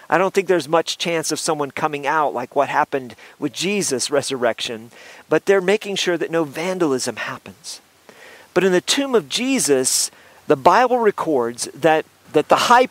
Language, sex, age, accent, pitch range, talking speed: English, male, 40-59, American, 140-195 Hz, 170 wpm